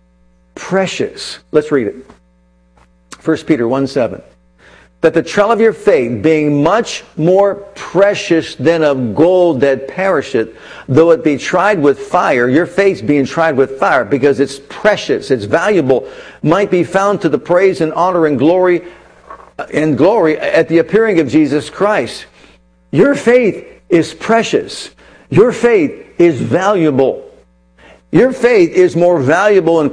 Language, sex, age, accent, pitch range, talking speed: English, male, 50-69, American, 140-205 Hz, 140 wpm